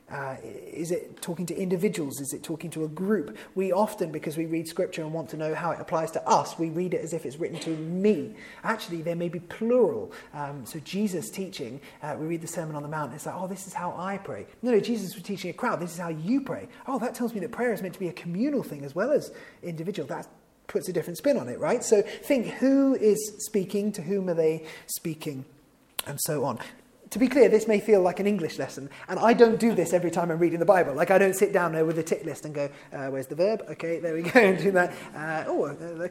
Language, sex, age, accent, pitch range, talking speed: English, male, 30-49, British, 160-215 Hz, 270 wpm